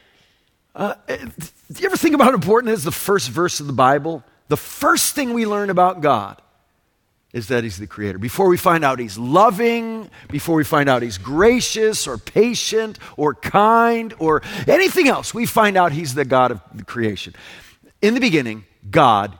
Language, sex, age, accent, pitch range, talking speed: English, male, 50-69, American, 120-195 Hz, 185 wpm